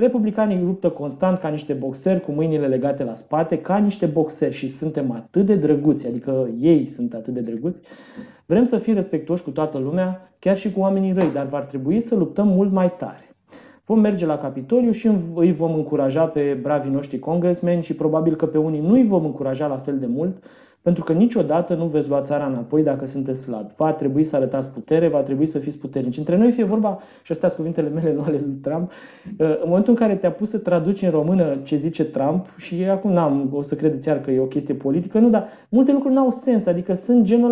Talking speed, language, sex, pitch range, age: 220 wpm, Romanian, male, 145-195 Hz, 20-39